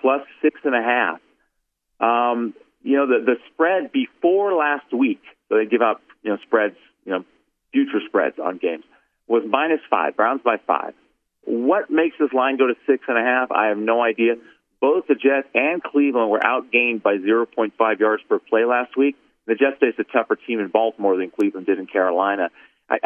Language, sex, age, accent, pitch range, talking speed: English, male, 40-59, American, 110-155 Hz, 195 wpm